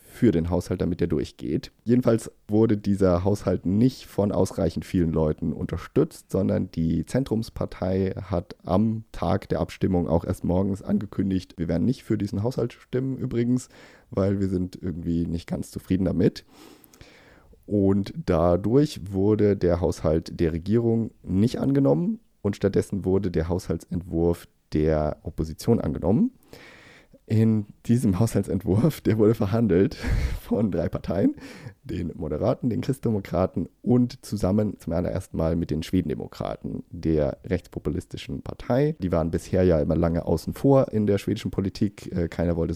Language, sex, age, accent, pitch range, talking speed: German, male, 30-49, German, 85-110 Hz, 140 wpm